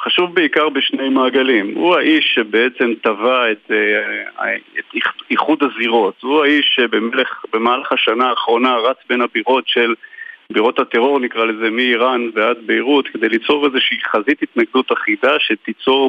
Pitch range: 120-160 Hz